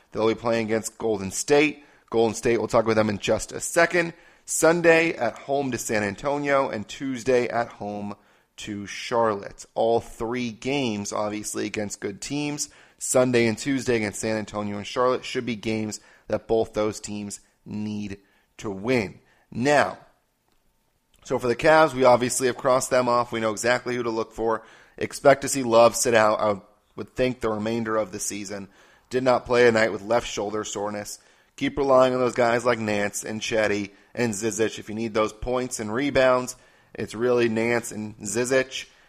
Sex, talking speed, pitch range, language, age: male, 180 wpm, 105-130 Hz, English, 30-49